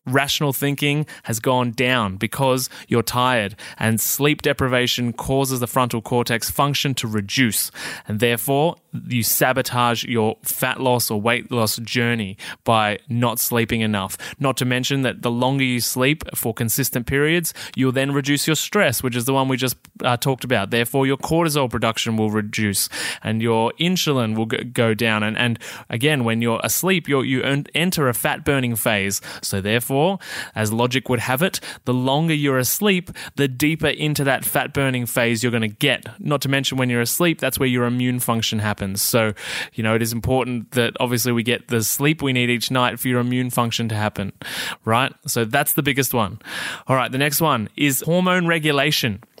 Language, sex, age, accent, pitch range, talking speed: English, male, 20-39, Australian, 115-140 Hz, 185 wpm